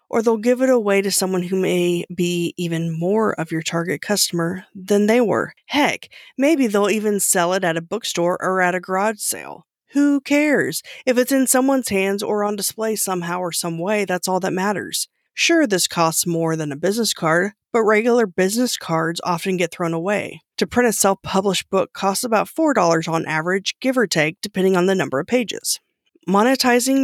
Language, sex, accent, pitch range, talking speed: English, female, American, 170-220 Hz, 195 wpm